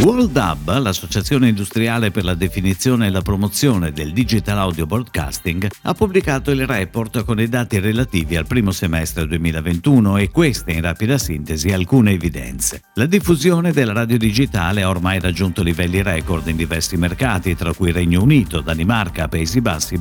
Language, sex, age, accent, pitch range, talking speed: Italian, male, 50-69, native, 85-135 Hz, 160 wpm